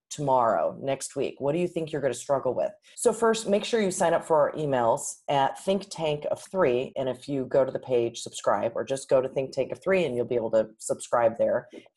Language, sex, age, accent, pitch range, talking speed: English, female, 30-49, American, 135-185 Hz, 250 wpm